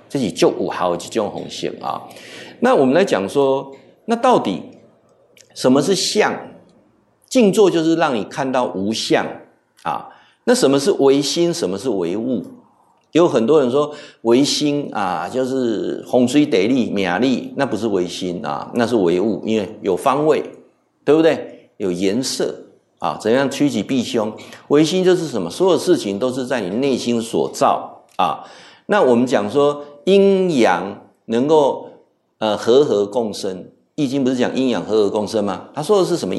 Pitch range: 125-180 Hz